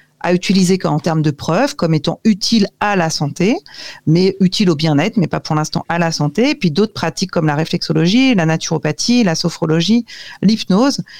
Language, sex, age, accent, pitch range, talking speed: French, female, 40-59, French, 160-195 Hz, 190 wpm